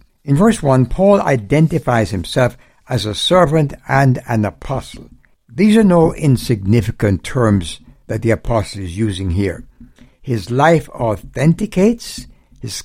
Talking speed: 125 wpm